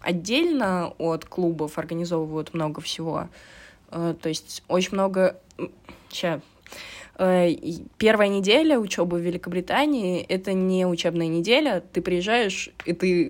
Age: 20-39